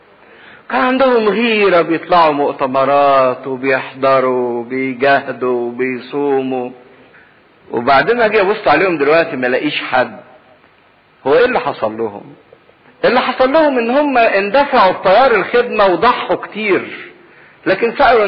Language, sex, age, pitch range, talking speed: English, male, 50-69, 130-220 Hz, 110 wpm